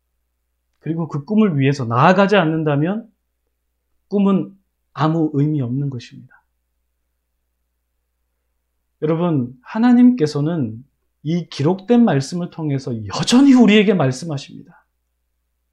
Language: English